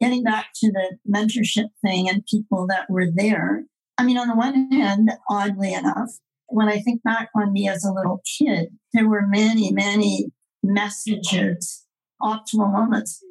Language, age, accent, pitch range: English, 50-69, American, 210-250 Hz